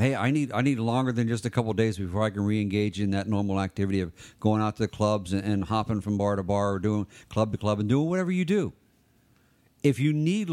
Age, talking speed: 50-69, 250 wpm